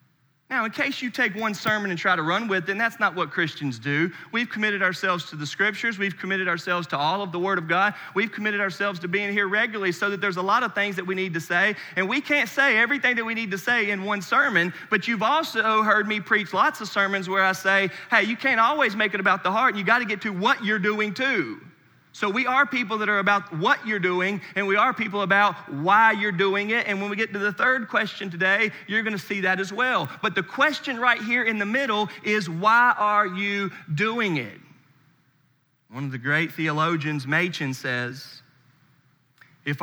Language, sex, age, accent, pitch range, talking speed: English, male, 30-49, American, 160-215 Hz, 230 wpm